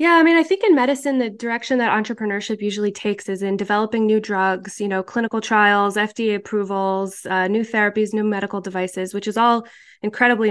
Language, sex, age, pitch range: English, female, 20-39, 200-240 Hz